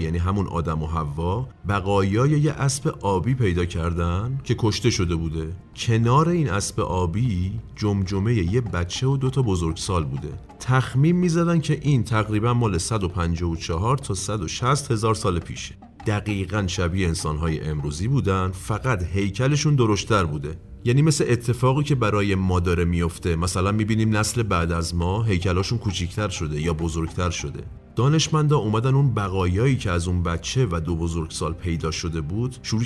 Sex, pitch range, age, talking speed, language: male, 85-120 Hz, 40-59, 150 wpm, Persian